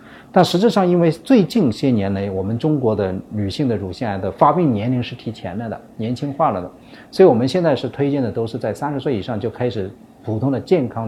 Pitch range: 100-130 Hz